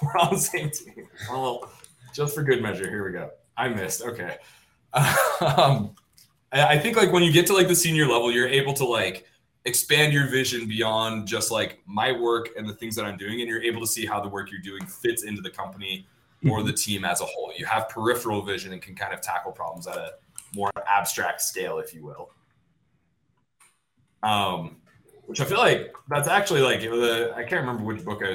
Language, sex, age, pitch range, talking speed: English, male, 20-39, 100-125 Hz, 210 wpm